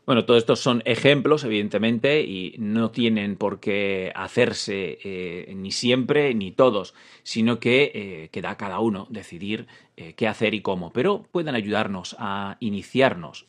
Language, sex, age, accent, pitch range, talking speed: Spanish, male, 40-59, Spanish, 100-120 Hz, 155 wpm